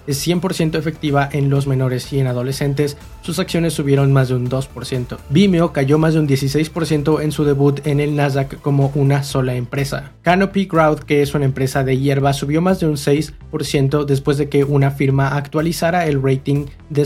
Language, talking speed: Spanish, 190 wpm